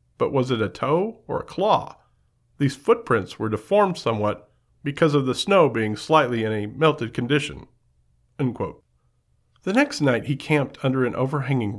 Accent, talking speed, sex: American, 160 wpm, male